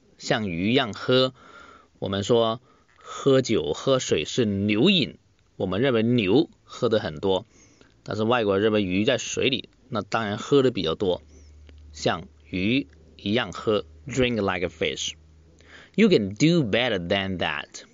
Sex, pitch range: male, 95-155 Hz